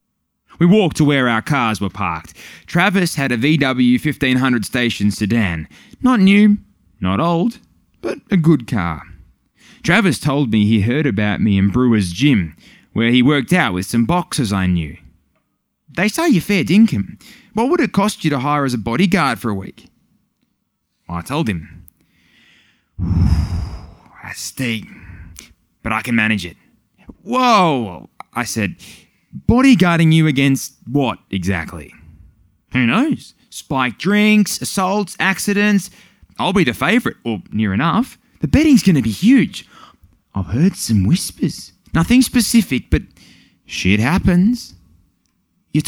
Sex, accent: male, Australian